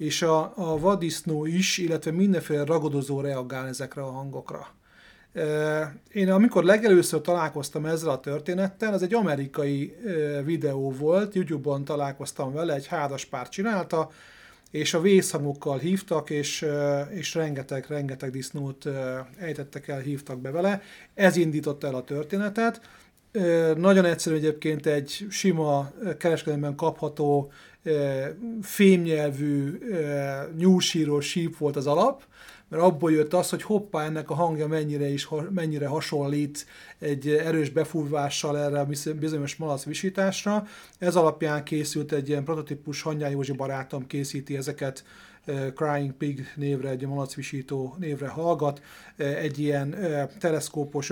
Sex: male